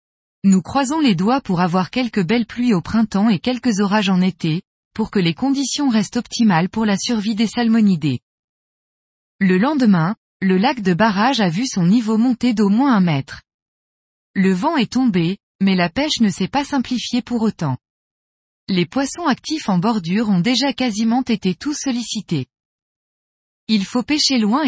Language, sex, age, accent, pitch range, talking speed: French, female, 20-39, French, 185-250 Hz, 170 wpm